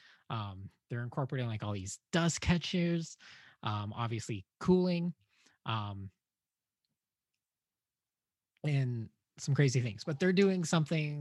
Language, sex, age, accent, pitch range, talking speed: English, male, 20-39, American, 115-145 Hz, 105 wpm